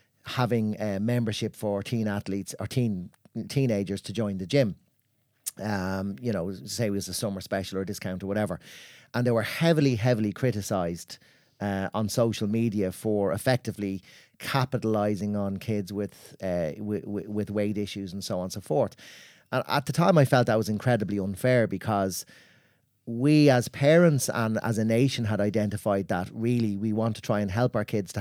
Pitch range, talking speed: 100-120 Hz, 185 wpm